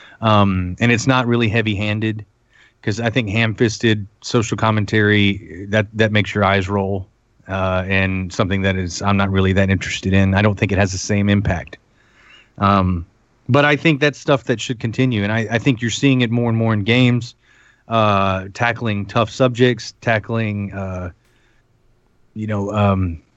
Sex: male